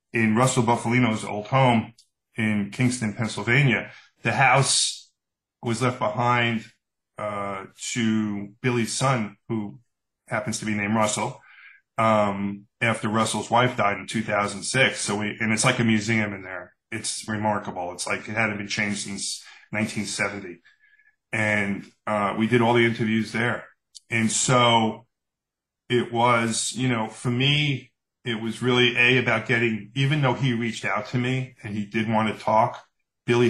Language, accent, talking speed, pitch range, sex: English, American, 150 wpm, 105-125 Hz, male